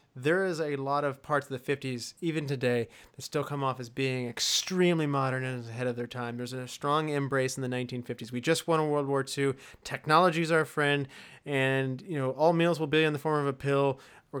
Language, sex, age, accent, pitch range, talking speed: English, male, 30-49, American, 130-160 Hz, 235 wpm